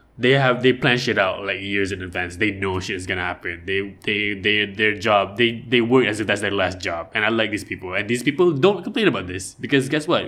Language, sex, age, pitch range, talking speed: English, male, 20-39, 95-115 Hz, 265 wpm